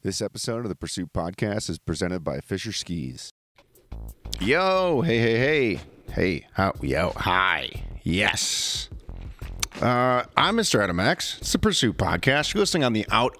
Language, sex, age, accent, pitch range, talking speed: English, male, 40-59, American, 95-145 Hz, 150 wpm